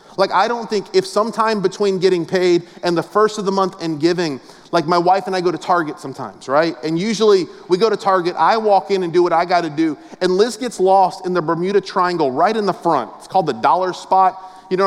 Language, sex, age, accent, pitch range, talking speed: English, male, 30-49, American, 170-205 Hz, 250 wpm